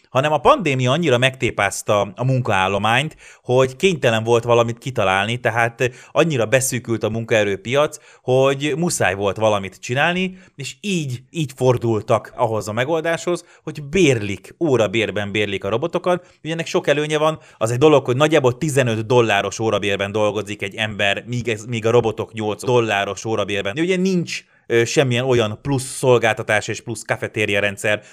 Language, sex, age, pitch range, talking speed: Hungarian, male, 30-49, 105-140 Hz, 150 wpm